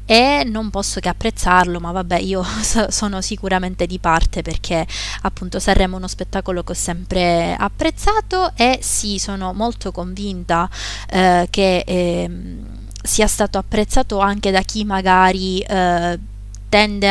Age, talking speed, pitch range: 20-39, 135 wpm, 180-205 Hz